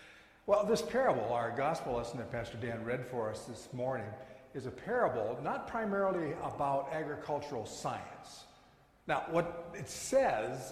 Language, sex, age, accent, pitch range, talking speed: English, male, 60-79, American, 120-165 Hz, 145 wpm